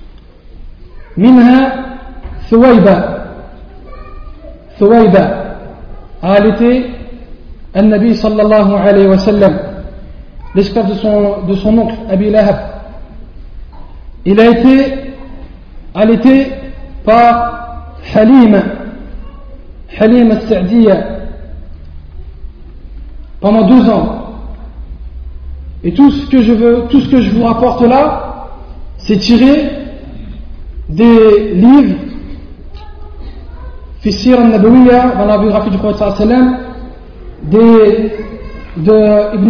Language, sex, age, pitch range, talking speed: French, male, 40-59, 190-235 Hz, 85 wpm